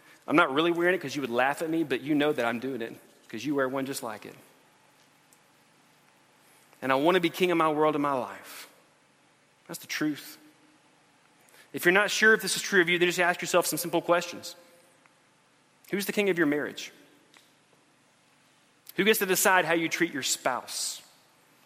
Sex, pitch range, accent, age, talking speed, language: male, 130-175 Hz, American, 30-49, 200 wpm, English